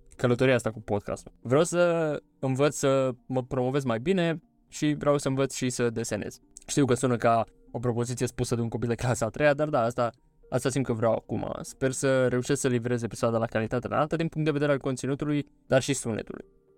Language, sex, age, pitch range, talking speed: Romanian, male, 20-39, 115-140 Hz, 210 wpm